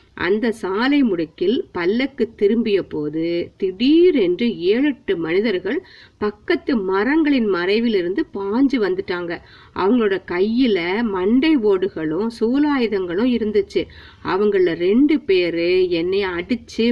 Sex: female